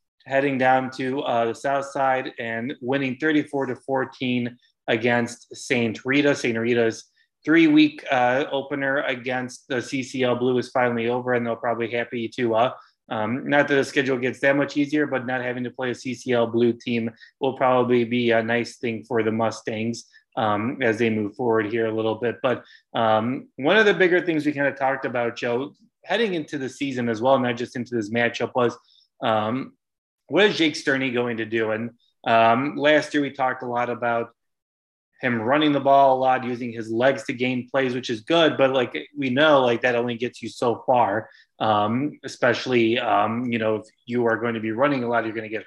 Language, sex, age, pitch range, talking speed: English, male, 20-39, 115-135 Hz, 200 wpm